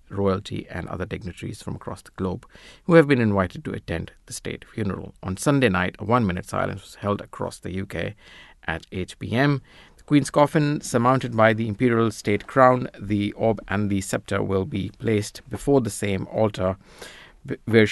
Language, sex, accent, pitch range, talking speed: English, male, Indian, 95-110 Hz, 180 wpm